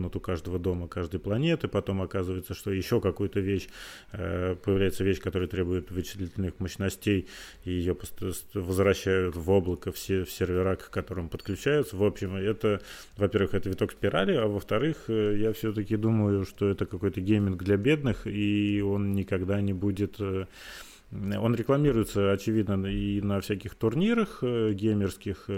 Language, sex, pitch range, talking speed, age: Russian, male, 95-105 Hz, 140 wpm, 30-49